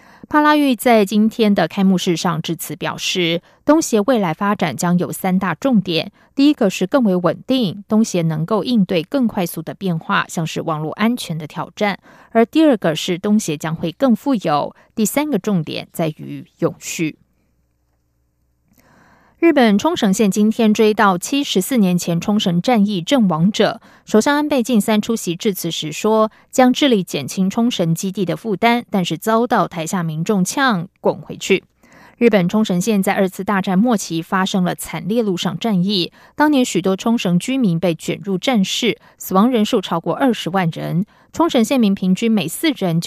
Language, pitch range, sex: German, 170-230 Hz, female